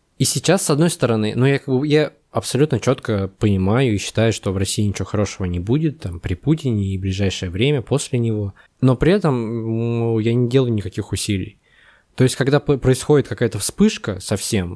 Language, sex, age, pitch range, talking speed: Russian, male, 20-39, 100-130 Hz, 185 wpm